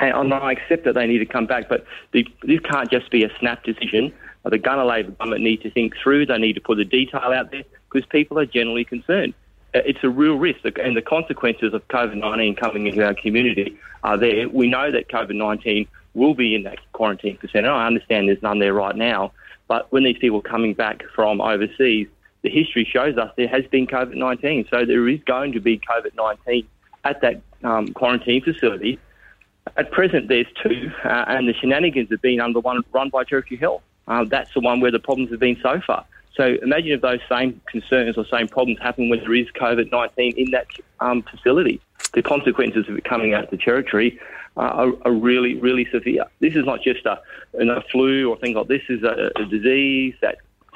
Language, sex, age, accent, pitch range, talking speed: English, male, 30-49, Australian, 110-130 Hz, 210 wpm